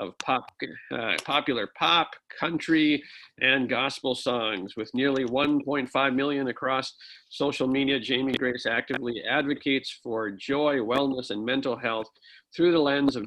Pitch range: 125-150 Hz